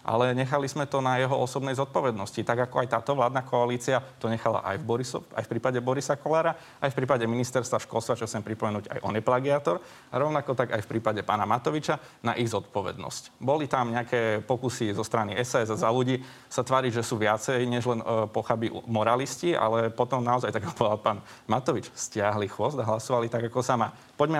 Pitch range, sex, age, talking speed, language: 115-130 Hz, male, 30-49, 205 wpm, Slovak